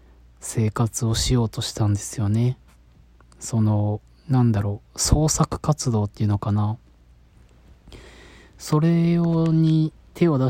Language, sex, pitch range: Japanese, male, 105-135 Hz